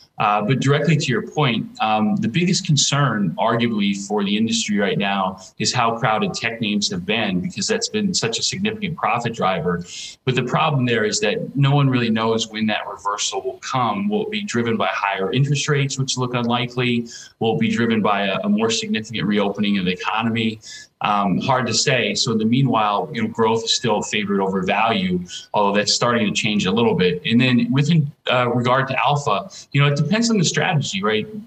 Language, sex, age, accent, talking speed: English, male, 30-49, American, 210 wpm